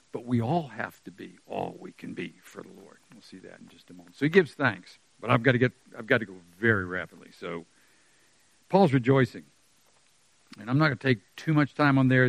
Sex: male